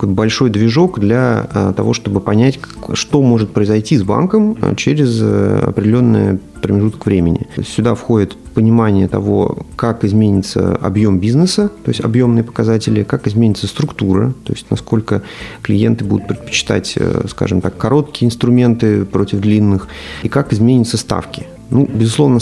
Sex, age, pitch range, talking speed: male, 30-49, 100-125 Hz, 130 wpm